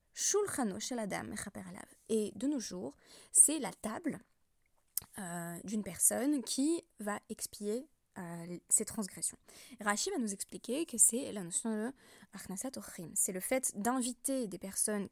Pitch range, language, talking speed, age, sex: 195-240 Hz, French, 130 wpm, 20-39, female